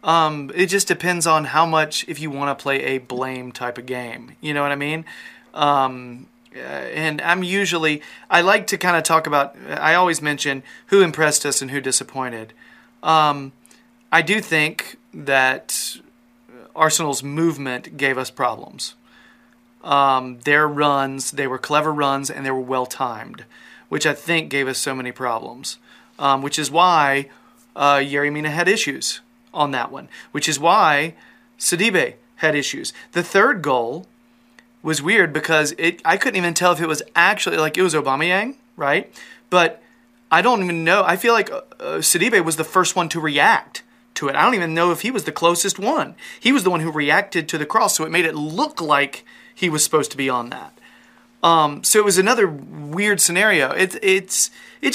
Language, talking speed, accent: English, 180 wpm, American